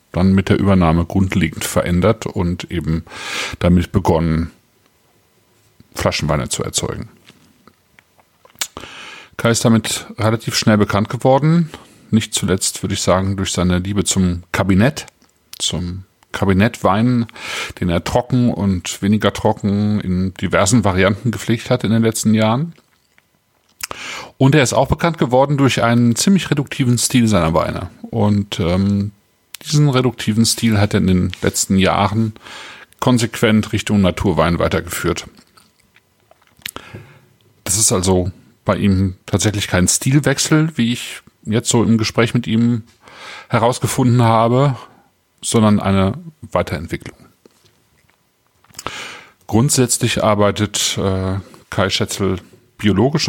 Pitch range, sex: 95-120 Hz, male